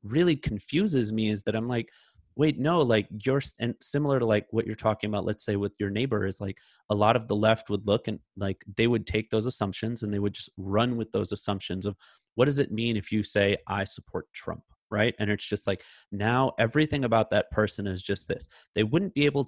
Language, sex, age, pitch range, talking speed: English, male, 30-49, 105-120 Hz, 235 wpm